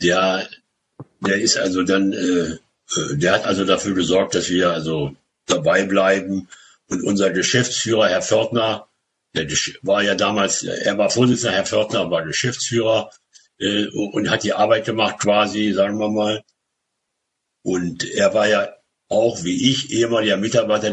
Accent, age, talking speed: German, 60-79, 145 wpm